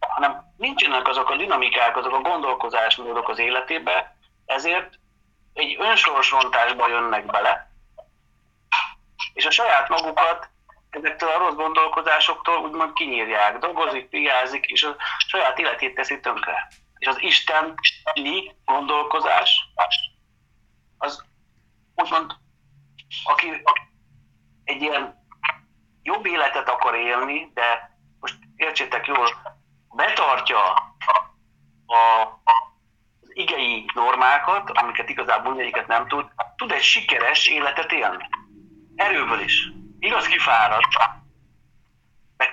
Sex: male